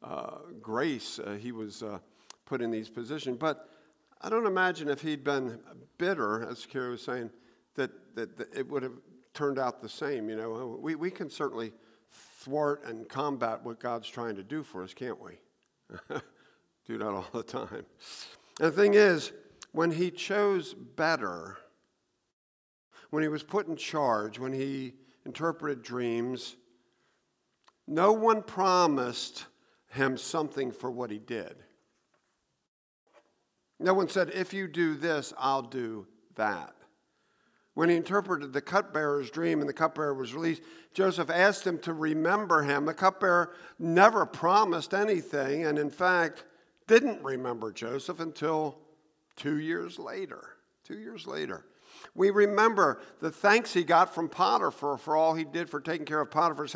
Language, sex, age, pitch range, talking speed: English, male, 50-69, 125-175 Hz, 150 wpm